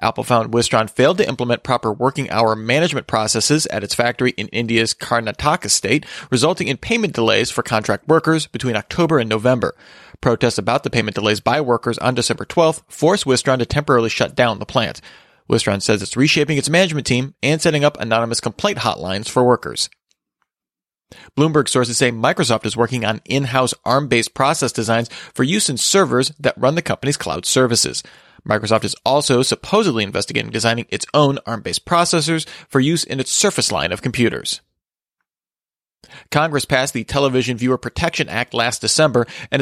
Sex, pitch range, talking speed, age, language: male, 115-150 Hz, 170 wpm, 30-49, English